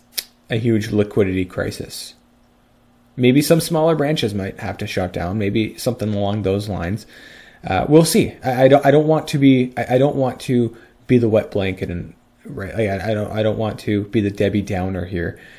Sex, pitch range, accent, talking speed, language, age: male, 100-130 Hz, American, 200 wpm, English, 30-49